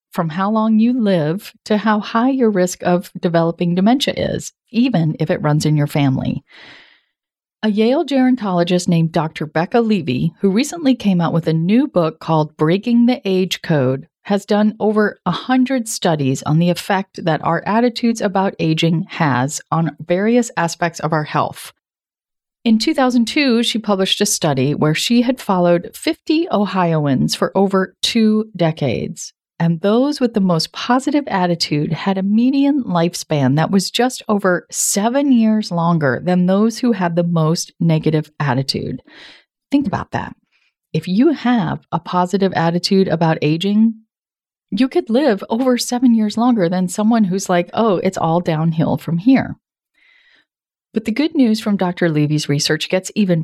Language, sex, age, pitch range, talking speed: English, female, 40-59, 165-230 Hz, 160 wpm